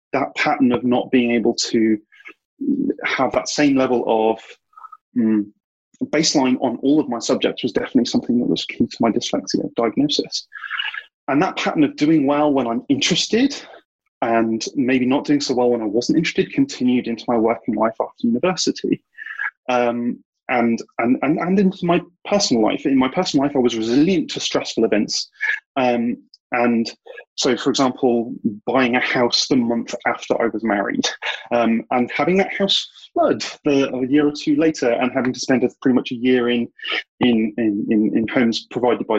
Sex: male